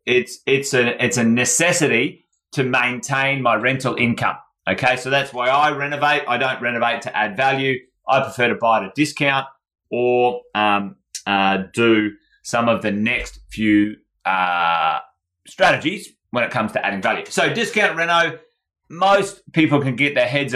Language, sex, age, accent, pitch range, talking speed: English, male, 30-49, Australian, 120-145 Hz, 165 wpm